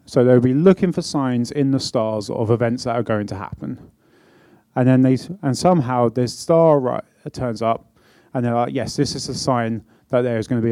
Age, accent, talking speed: 30-49, British, 230 wpm